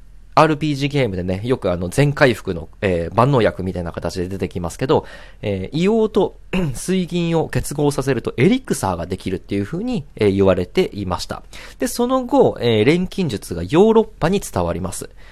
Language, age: Japanese, 40-59